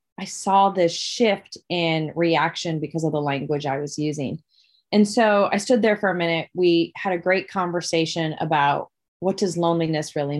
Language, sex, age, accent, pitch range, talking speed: English, female, 30-49, American, 155-195 Hz, 180 wpm